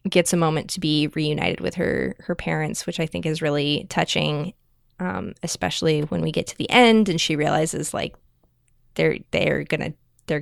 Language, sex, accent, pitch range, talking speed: English, female, American, 155-185 Hz, 185 wpm